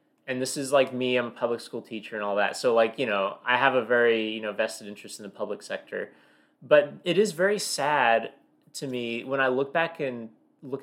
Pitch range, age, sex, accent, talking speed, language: 105-140 Hz, 30-49, male, American, 235 wpm, English